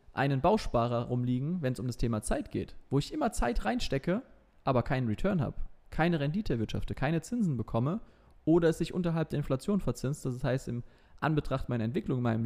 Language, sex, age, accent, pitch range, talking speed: German, male, 20-39, German, 110-145 Hz, 195 wpm